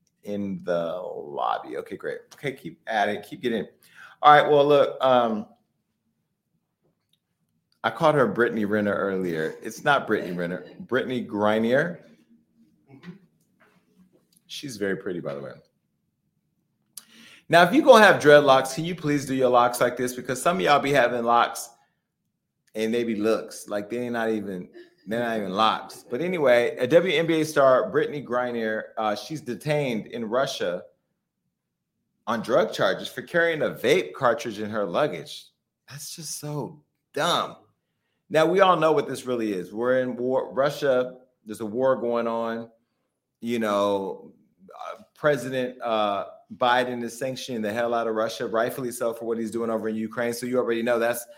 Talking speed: 160 wpm